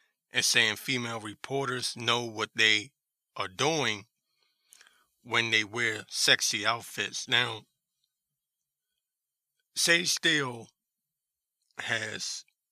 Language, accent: English, American